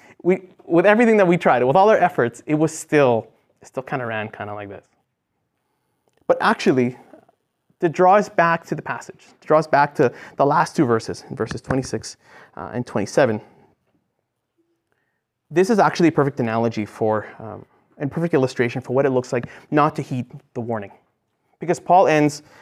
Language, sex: English, male